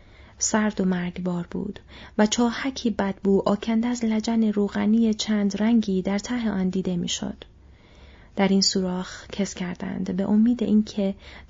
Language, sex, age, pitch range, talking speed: Persian, female, 30-49, 185-225 Hz, 135 wpm